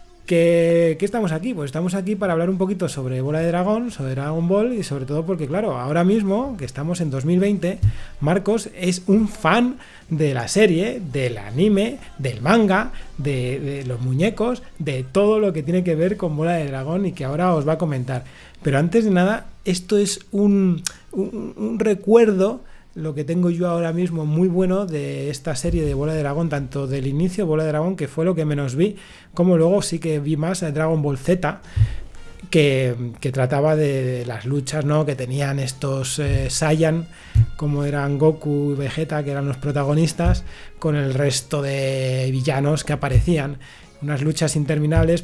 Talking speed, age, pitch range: 180 wpm, 30-49, 140-180 Hz